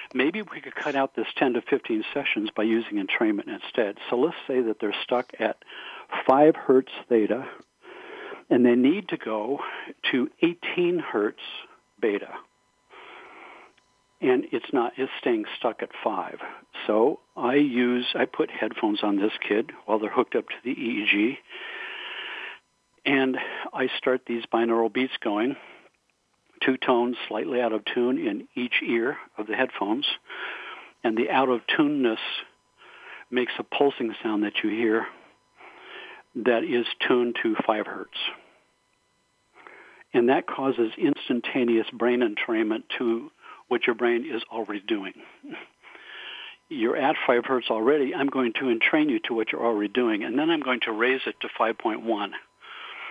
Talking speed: 145 wpm